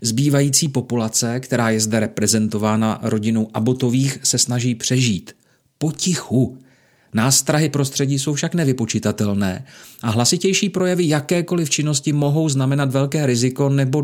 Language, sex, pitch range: Czech, male, 125-155 Hz